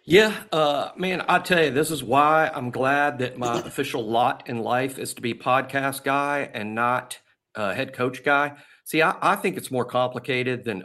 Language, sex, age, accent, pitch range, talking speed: English, male, 50-69, American, 115-145 Hz, 200 wpm